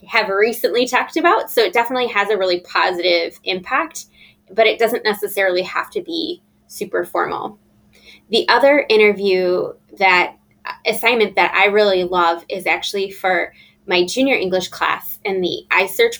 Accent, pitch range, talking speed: American, 185-240 Hz, 150 wpm